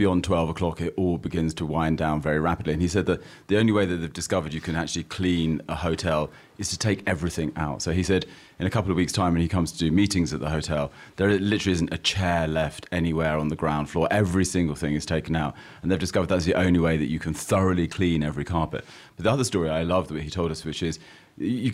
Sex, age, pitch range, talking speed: male, 30-49, 80-95 Hz, 260 wpm